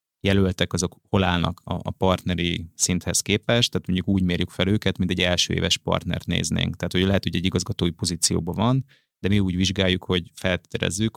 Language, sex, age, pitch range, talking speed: Hungarian, male, 30-49, 90-105 Hz, 175 wpm